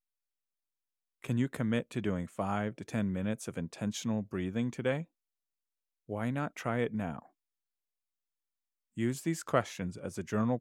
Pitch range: 100-115 Hz